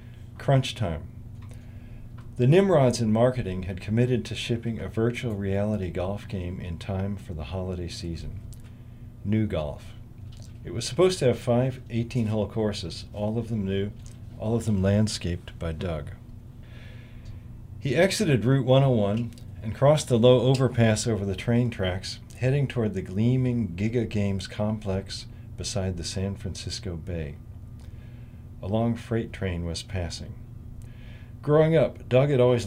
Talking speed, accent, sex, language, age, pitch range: 140 wpm, American, male, English, 40-59, 105-120 Hz